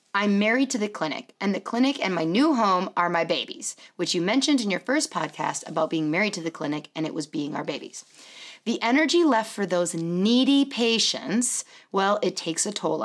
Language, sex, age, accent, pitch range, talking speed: English, female, 30-49, American, 170-235 Hz, 210 wpm